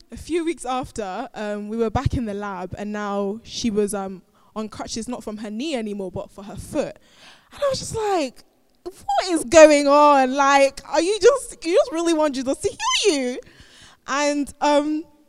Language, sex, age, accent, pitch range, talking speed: English, female, 10-29, British, 205-255 Hz, 195 wpm